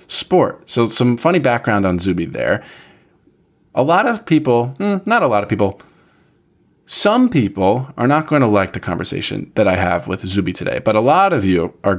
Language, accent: English, American